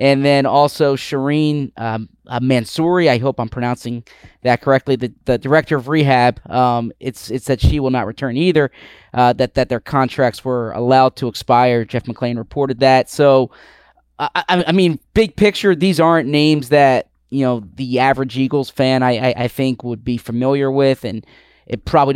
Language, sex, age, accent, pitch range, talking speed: English, male, 20-39, American, 125-145 Hz, 185 wpm